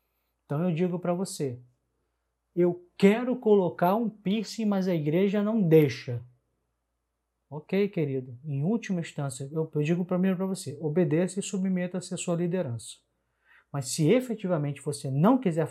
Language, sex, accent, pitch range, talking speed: Portuguese, male, Brazilian, 145-195 Hz, 140 wpm